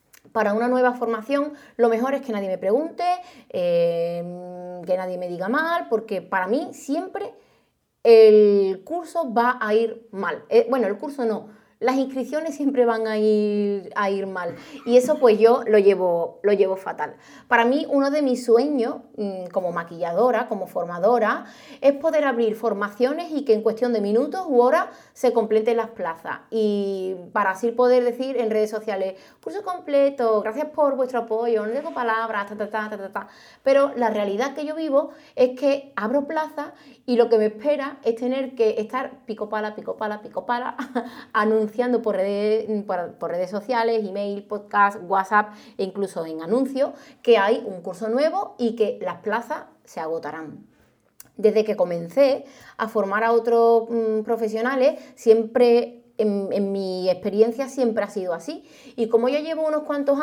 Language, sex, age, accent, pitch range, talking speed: Spanish, female, 30-49, Spanish, 205-270 Hz, 170 wpm